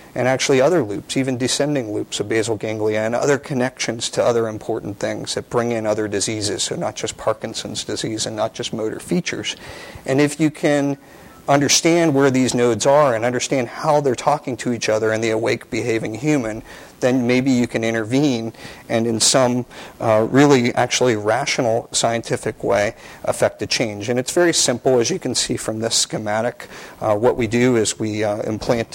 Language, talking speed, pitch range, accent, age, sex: English, 185 wpm, 110-130 Hz, American, 50-69, male